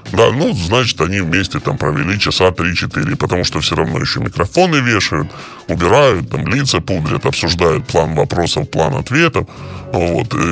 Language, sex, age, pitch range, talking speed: Russian, female, 20-39, 85-120 Hz, 150 wpm